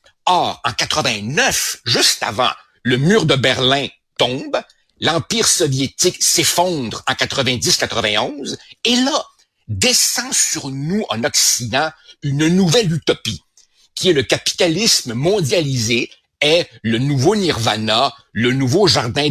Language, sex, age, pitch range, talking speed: French, male, 60-79, 120-165 Hz, 115 wpm